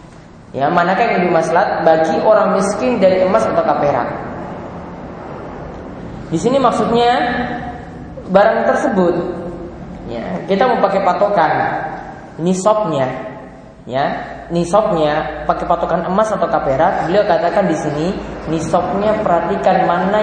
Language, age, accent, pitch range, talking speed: English, 20-39, Indonesian, 140-190 Hz, 110 wpm